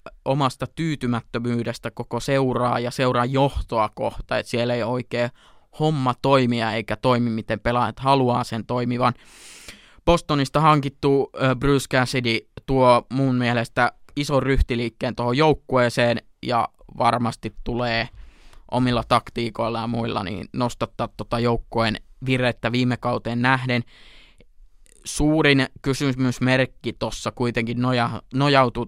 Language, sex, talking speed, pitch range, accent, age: Finnish, male, 110 wpm, 115-130 Hz, native, 20-39